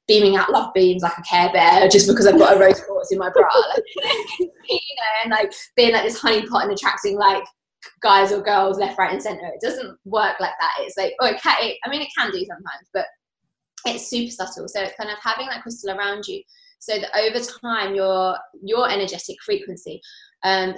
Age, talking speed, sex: 20-39, 210 wpm, female